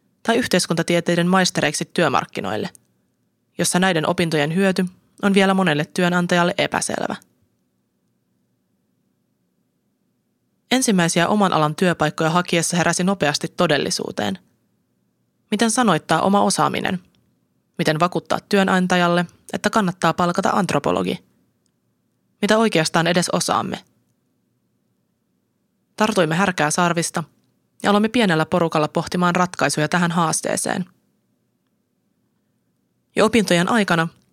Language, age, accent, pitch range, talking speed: Finnish, 20-39, native, 160-195 Hz, 85 wpm